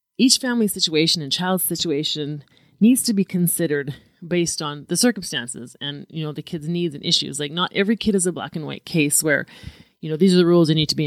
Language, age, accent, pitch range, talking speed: English, 30-49, American, 155-190 Hz, 235 wpm